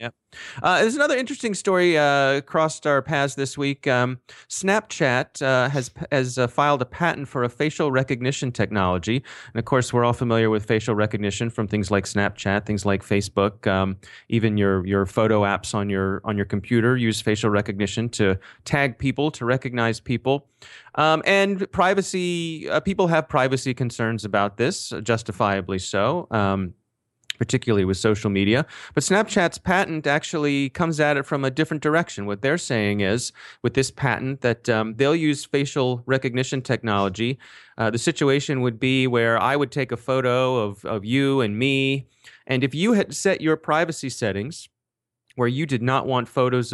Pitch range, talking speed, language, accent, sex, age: 110-145 Hz, 175 wpm, English, American, male, 30-49